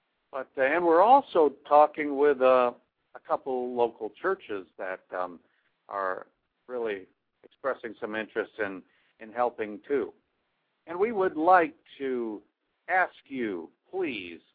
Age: 60-79